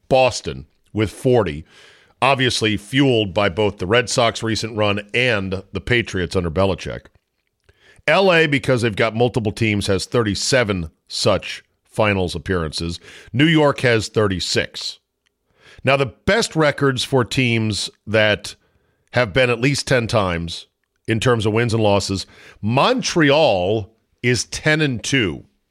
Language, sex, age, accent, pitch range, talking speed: English, male, 50-69, American, 100-125 Hz, 130 wpm